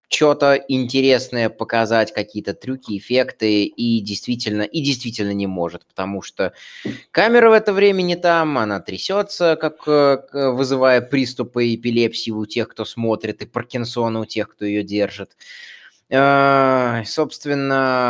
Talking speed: 130 wpm